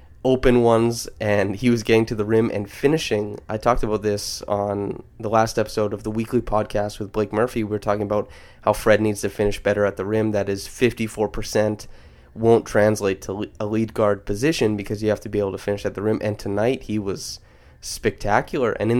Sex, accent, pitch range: male, American, 100-110 Hz